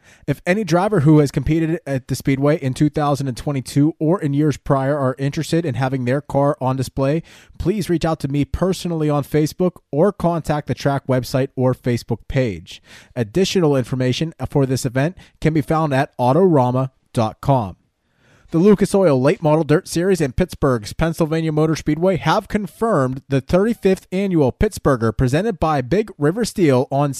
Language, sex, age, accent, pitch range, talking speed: English, male, 20-39, American, 130-160 Hz, 160 wpm